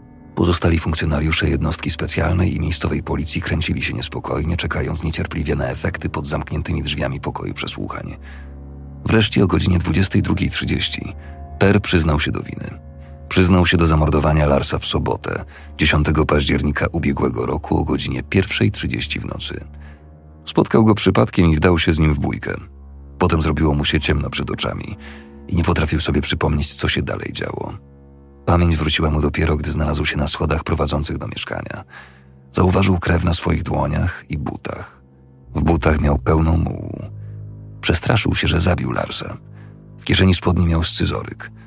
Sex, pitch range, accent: male, 75-95 Hz, native